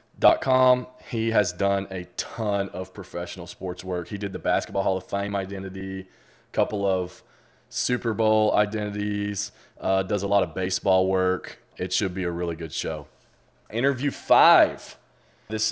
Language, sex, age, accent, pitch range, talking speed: English, male, 20-39, American, 95-115 Hz, 155 wpm